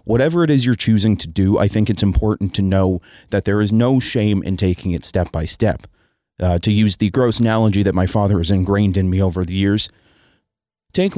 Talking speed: 220 wpm